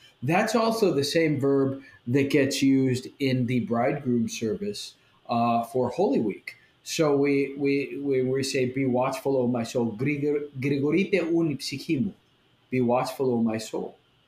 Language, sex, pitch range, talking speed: English, male, 115-140 Hz, 135 wpm